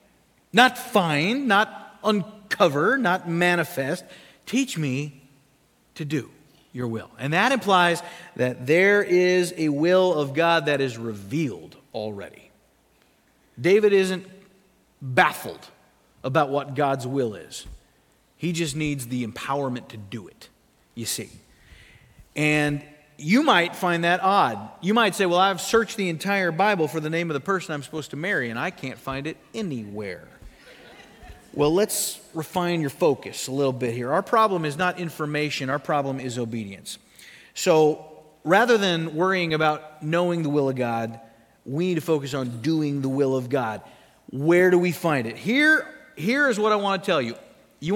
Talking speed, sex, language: 160 wpm, male, English